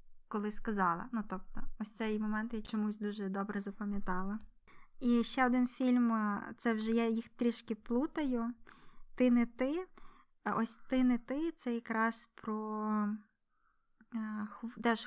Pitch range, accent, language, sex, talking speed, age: 215-245 Hz, native, Ukrainian, female, 135 wpm, 20-39